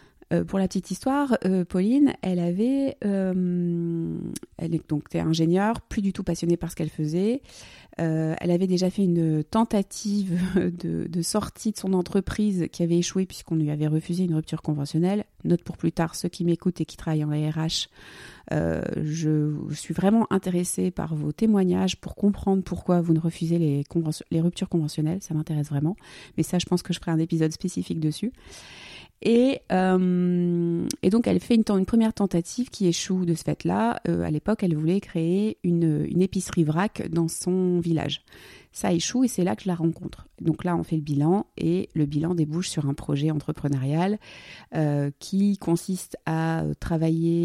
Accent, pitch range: French, 155-185 Hz